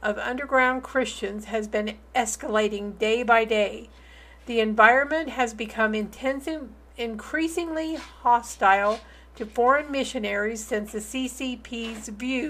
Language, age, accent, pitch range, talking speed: English, 50-69, American, 215-255 Hz, 100 wpm